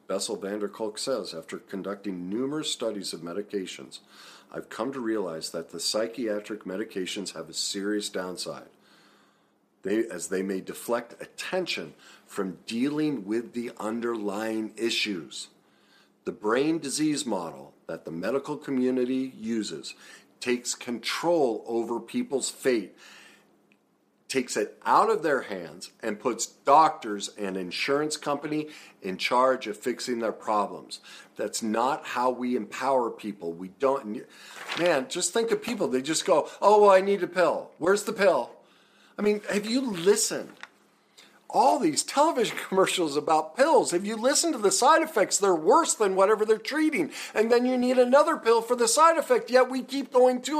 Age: 50-69